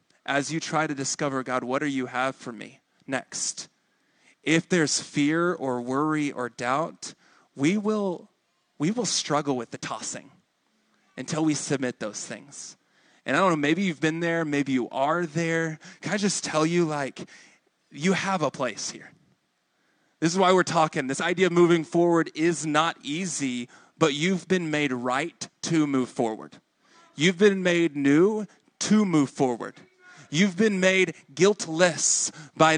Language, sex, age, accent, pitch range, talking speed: English, male, 30-49, American, 140-180 Hz, 165 wpm